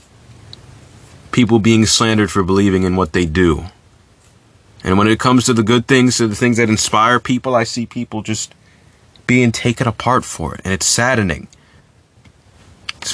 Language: English